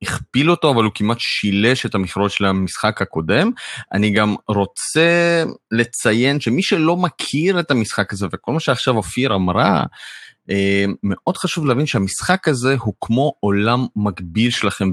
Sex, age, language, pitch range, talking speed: male, 30-49, Hebrew, 100-130 Hz, 145 wpm